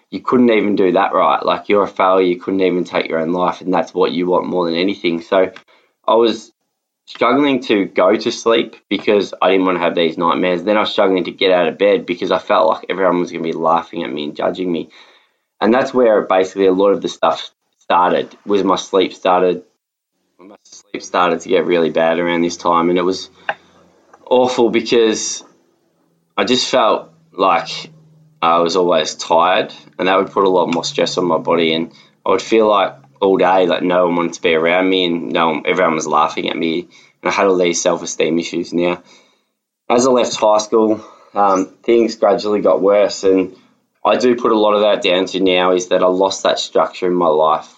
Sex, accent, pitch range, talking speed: male, Australian, 85-100 Hz, 220 wpm